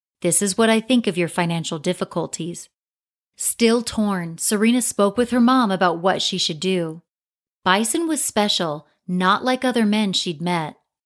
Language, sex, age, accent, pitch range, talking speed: English, female, 30-49, American, 175-220 Hz, 165 wpm